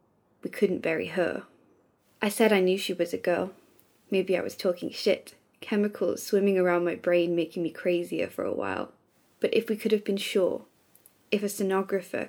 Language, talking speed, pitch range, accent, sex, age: English, 185 wpm, 175-205 Hz, British, female, 20-39